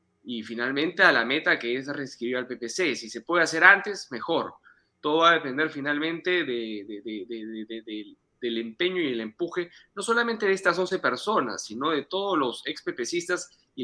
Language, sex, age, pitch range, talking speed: Spanish, male, 30-49, 120-180 Hz, 200 wpm